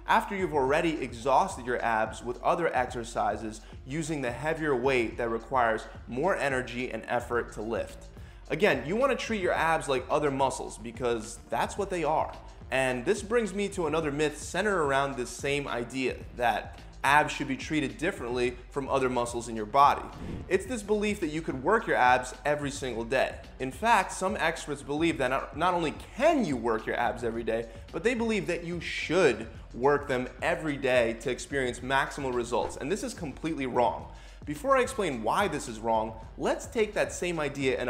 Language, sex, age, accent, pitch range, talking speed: English, male, 20-39, American, 120-165 Hz, 185 wpm